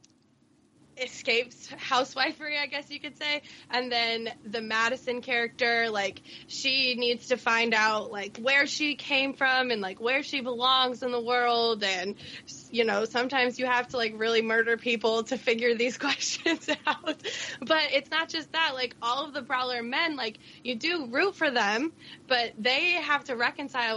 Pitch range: 225-290 Hz